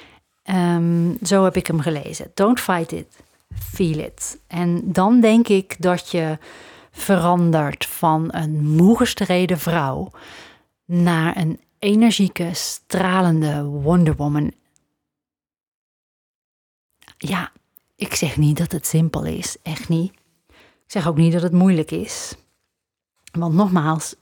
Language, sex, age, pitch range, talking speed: Dutch, female, 30-49, 160-205 Hz, 115 wpm